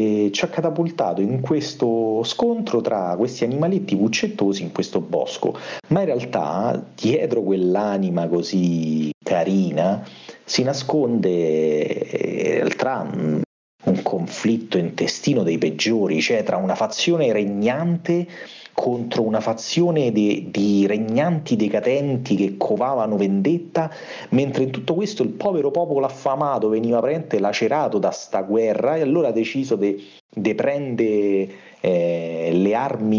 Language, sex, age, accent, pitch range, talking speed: Italian, male, 40-59, native, 100-140 Hz, 125 wpm